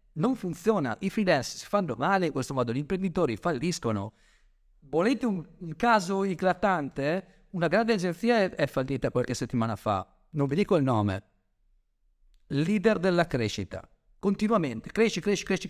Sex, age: male, 50-69